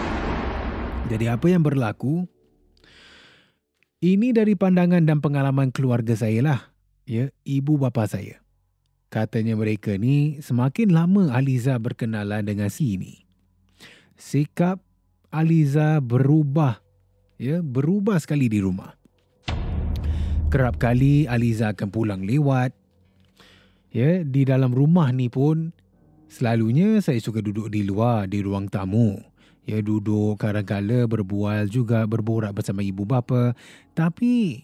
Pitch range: 100-155 Hz